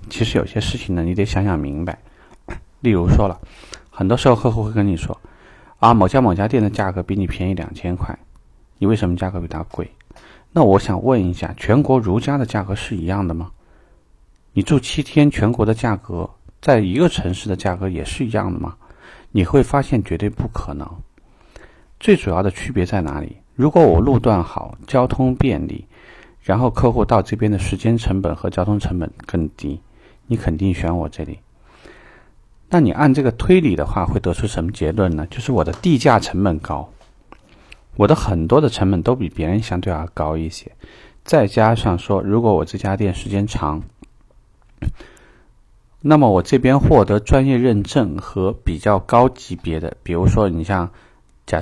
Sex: male